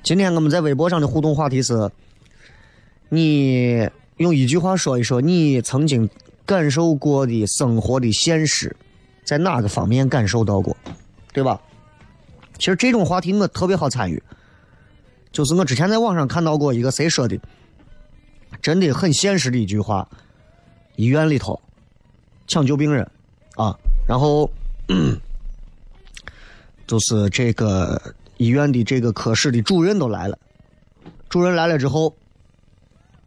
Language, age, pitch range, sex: Chinese, 30-49, 115-165 Hz, male